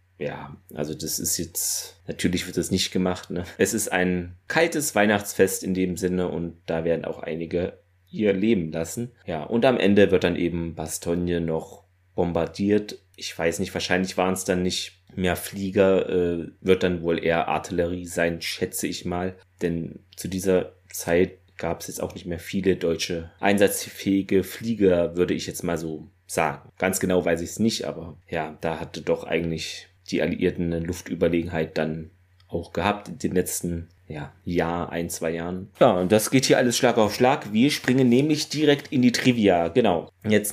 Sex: male